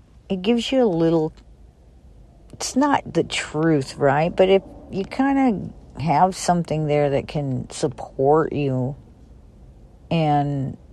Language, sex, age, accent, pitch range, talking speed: English, female, 50-69, American, 120-165 Hz, 125 wpm